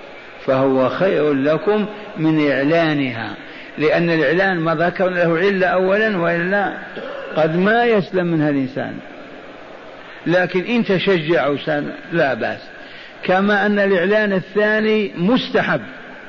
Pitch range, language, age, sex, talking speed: 160-200 Hz, Arabic, 60-79, male, 105 wpm